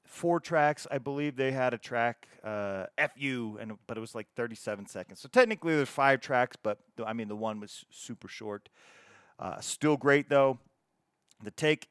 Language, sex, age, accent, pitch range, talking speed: English, male, 40-59, American, 120-160 Hz, 180 wpm